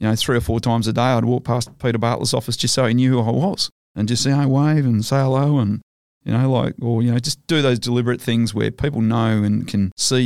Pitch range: 105-120 Hz